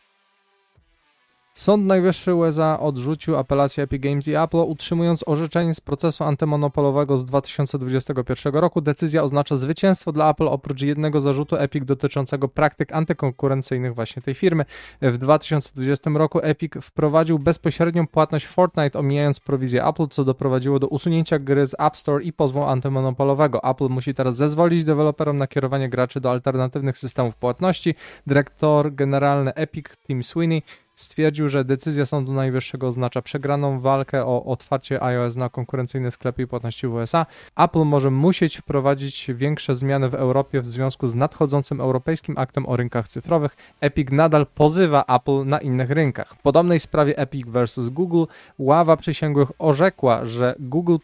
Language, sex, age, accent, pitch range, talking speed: Polish, male, 20-39, native, 130-155 Hz, 145 wpm